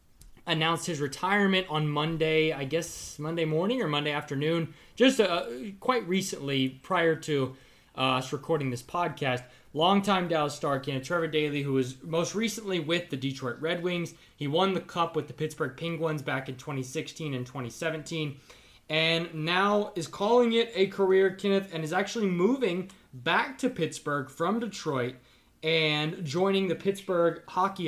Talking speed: 155 wpm